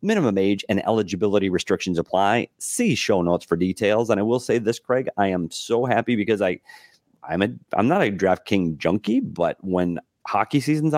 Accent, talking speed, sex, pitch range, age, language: American, 185 wpm, male, 85-110 Hz, 30-49, English